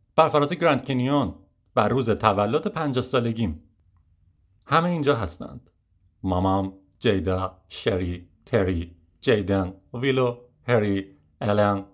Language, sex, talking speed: Persian, male, 100 wpm